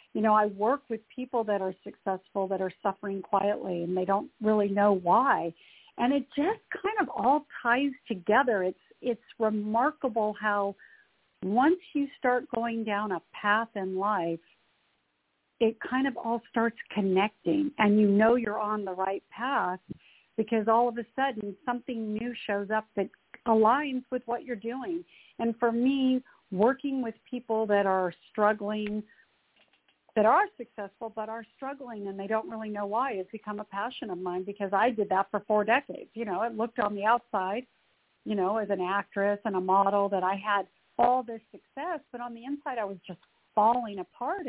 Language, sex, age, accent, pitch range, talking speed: English, female, 50-69, American, 205-255 Hz, 180 wpm